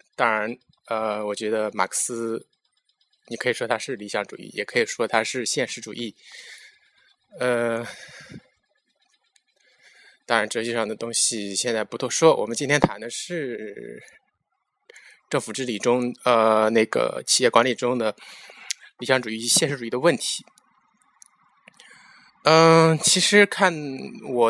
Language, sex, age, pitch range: Chinese, male, 20-39, 105-130 Hz